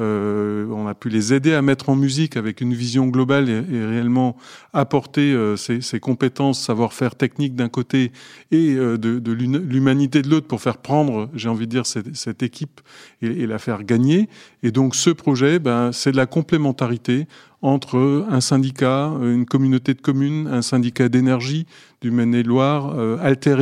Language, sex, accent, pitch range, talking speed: French, male, French, 120-140 Hz, 180 wpm